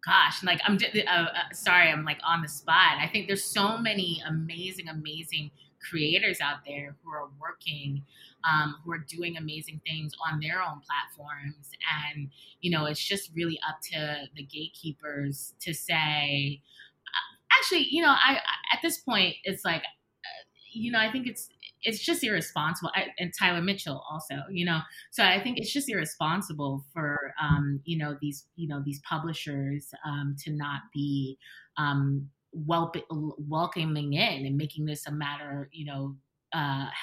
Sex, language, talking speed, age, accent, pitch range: female, English, 165 wpm, 20-39, American, 145-180 Hz